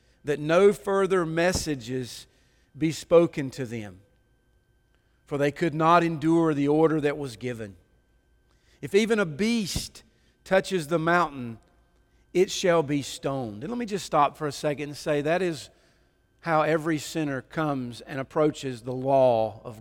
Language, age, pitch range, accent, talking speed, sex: English, 40-59, 130-165 Hz, American, 150 wpm, male